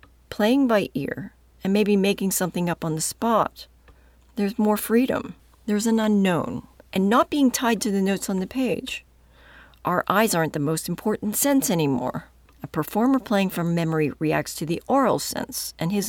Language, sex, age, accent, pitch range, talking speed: English, female, 50-69, American, 145-215 Hz, 175 wpm